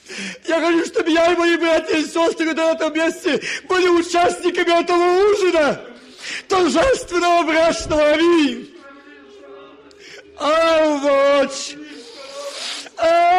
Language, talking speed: Russian, 95 wpm